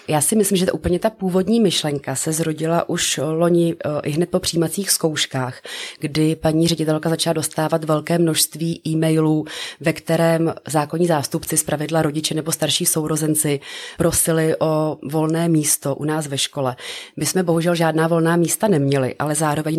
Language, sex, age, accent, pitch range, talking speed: Czech, female, 30-49, native, 150-170 Hz, 155 wpm